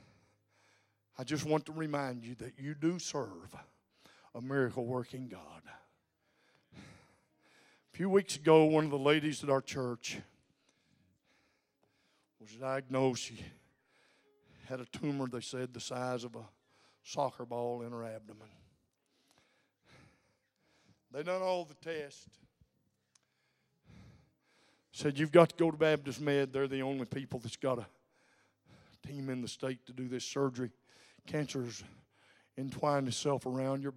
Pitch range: 115-150 Hz